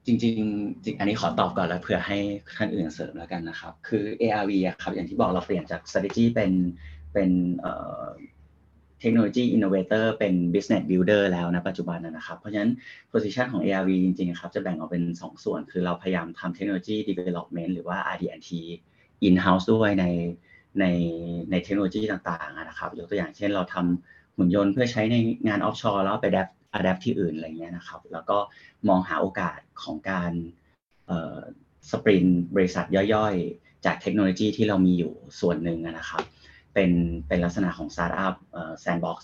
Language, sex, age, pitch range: Thai, male, 30-49, 85-100 Hz